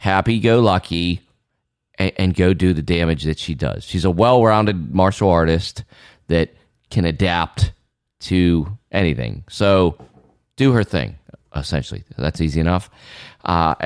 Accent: American